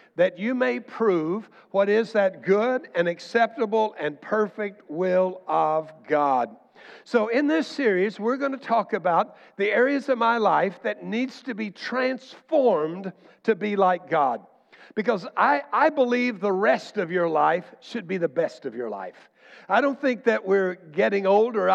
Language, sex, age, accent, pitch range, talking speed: English, male, 60-79, American, 190-250 Hz, 170 wpm